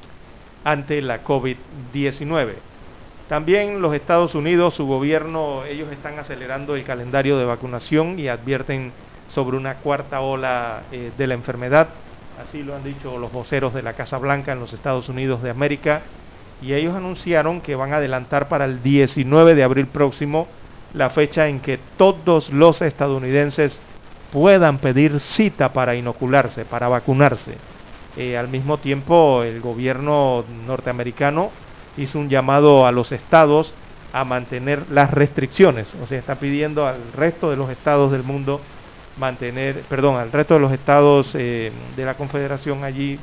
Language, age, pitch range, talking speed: Spanish, 40-59, 125-150 Hz, 150 wpm